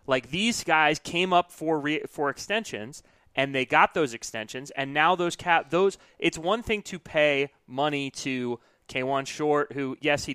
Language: English